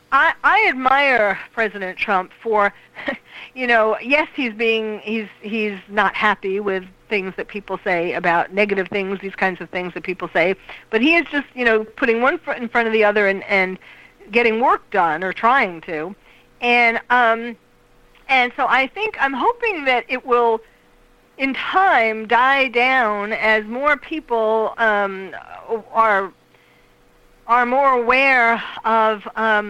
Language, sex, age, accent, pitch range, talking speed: English, female, 50-69, American, 205-255 Hz, 155 wpm